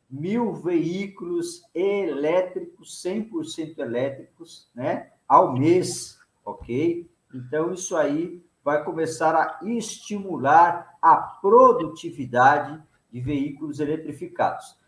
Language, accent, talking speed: Portuguese, Brazilian, 85 wpm